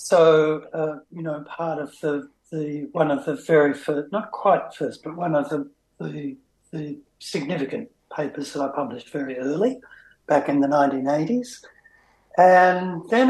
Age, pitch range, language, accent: 60-79, 150-185 Hz, English, Australian